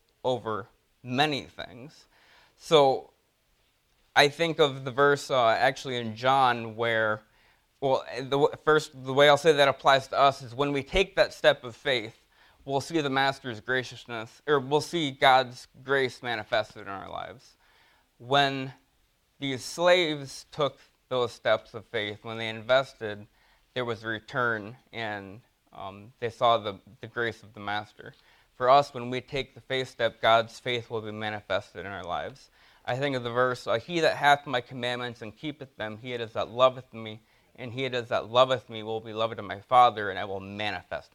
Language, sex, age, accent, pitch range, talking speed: English, male, 20-39, American, 110-135 Hz, 180 wpm